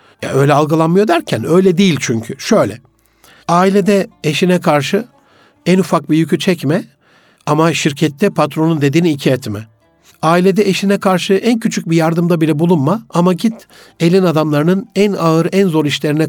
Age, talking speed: 60-79, 145 wpm